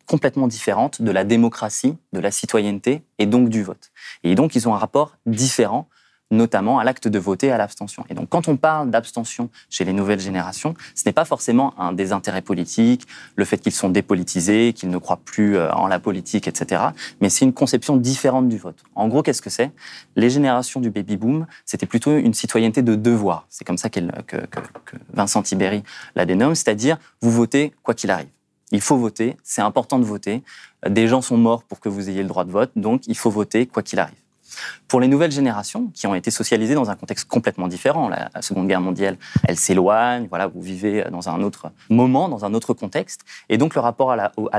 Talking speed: 215 wpm